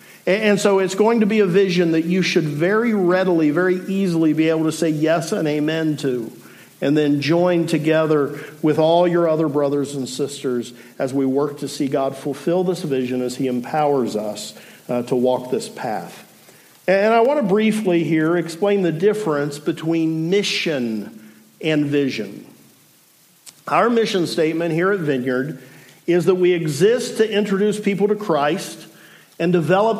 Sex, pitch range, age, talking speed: male, 145-190 Hz, 50-69, 165 wpm